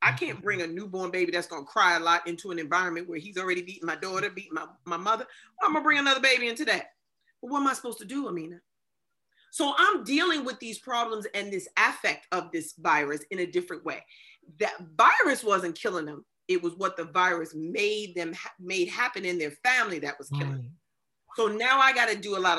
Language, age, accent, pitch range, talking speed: English, 40-59, American, 175-260 Hz, 230 wpm